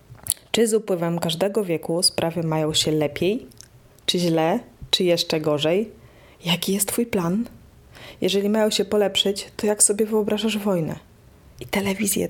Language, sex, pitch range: Polish, female, 160-205 Hz